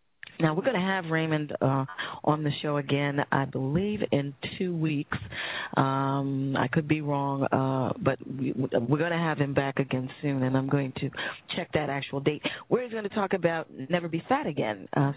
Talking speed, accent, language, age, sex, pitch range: 200 wpm, American, English, 40-59, female, 135-165 Hz